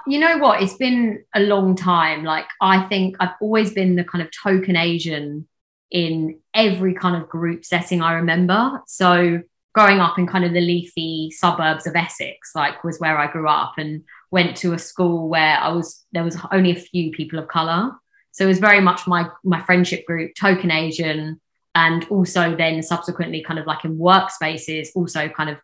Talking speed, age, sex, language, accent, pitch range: 195 wpm, 20-39, female, English, British, 165-195 Hz